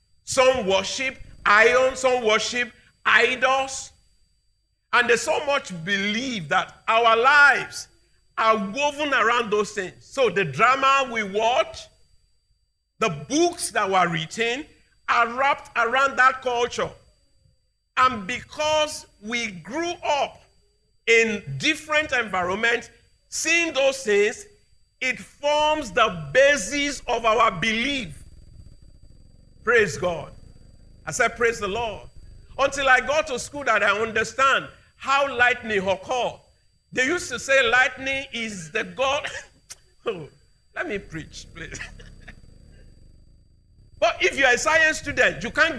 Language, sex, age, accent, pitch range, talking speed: English, male, 50-69, Nigerian, 205-285 Hz, 120 wpm